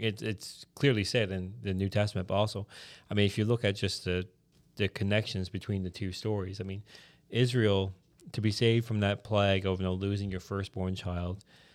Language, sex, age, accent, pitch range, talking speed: English, male, 30-49, American, 95-115 Hz, 190 wpm